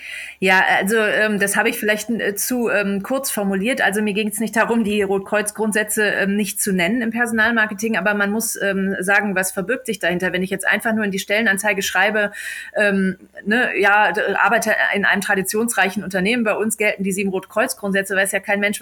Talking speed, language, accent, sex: 205 wpm, German, German, female